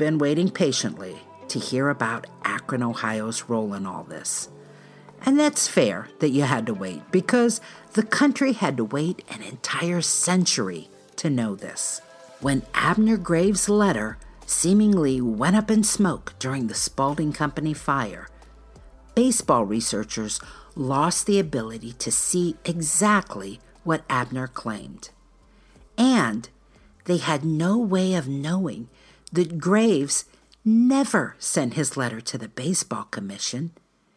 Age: 50-69